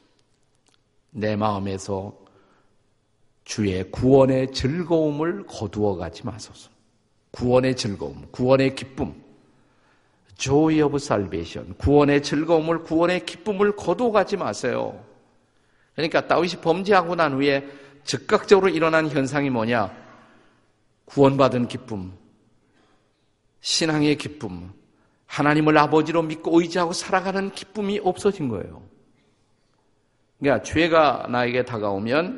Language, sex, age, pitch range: Korean, male, 50-69, 110-165 Hz